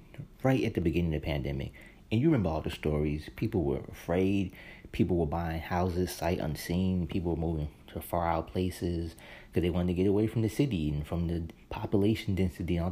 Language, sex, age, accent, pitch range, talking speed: English, male, 30-49, American, 85-105 Hz, 210 wpm